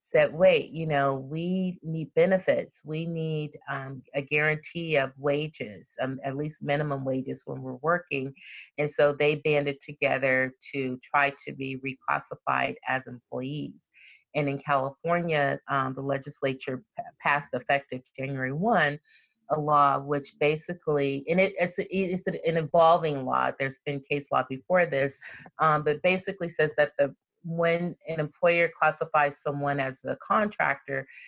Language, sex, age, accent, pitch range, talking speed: English, female, 30-49, American, 135-160 Hz, 150 wpm